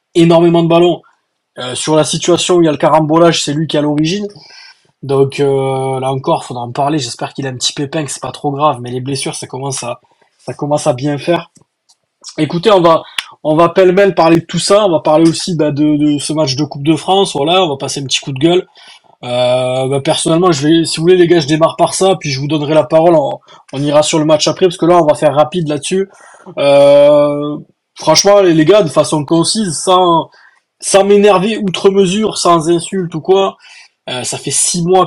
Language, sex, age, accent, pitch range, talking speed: French, male, 20-39, French, 140-180 Hz, 235 wpm